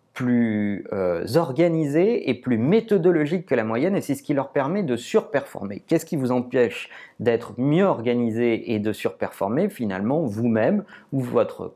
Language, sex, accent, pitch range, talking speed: French, male, French, 115-165 Hz, 160 wpm